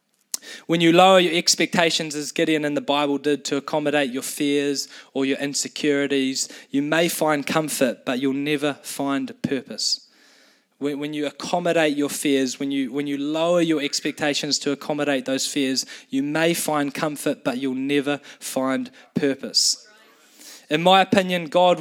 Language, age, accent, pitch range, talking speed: English, 20-39, Australian, 145-175 Hz, 155 wpm